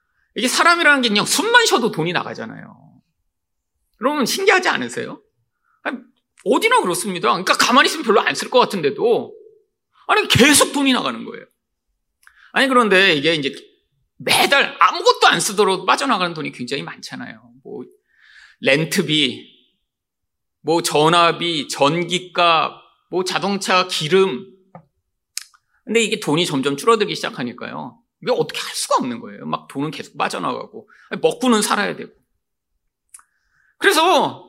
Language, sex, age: Korean, male, 30-49